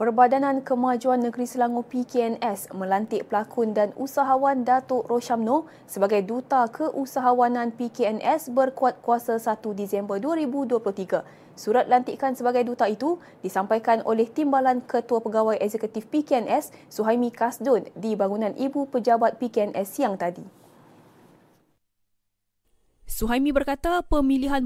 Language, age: Malay, 20-39